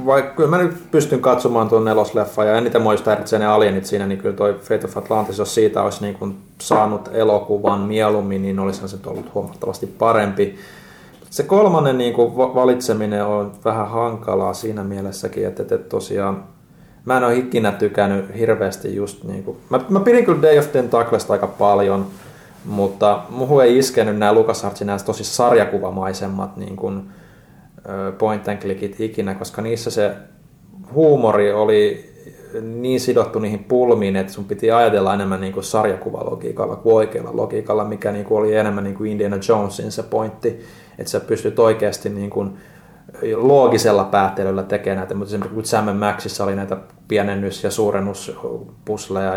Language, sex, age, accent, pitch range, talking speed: Finnish, male, 30-49, native, 100-115 Hz, 150 wpm